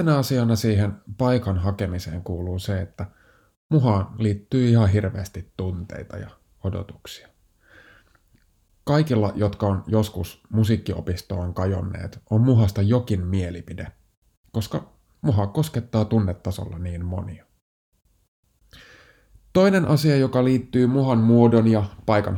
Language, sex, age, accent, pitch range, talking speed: Finnish, male, 30-49, native, 95-115 Hz, 105 wpm